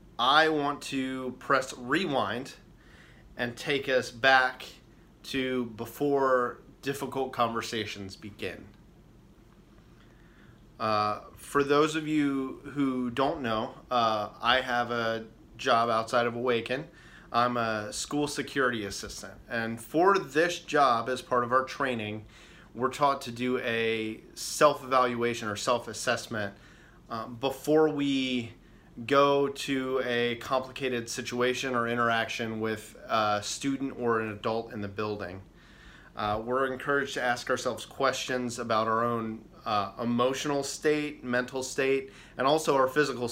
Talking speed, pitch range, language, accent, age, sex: 125 wpm, 115-135 Hz, English, American, 30-49, male